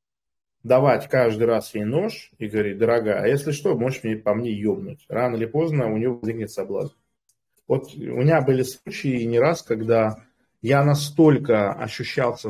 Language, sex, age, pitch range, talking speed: Russian, male, 20-39, 110-150 Hz, 160 wpm